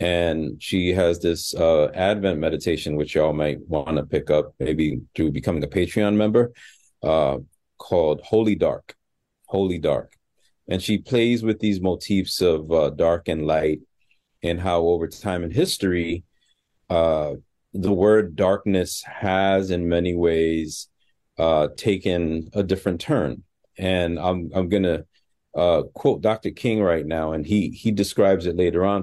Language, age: English, 30-49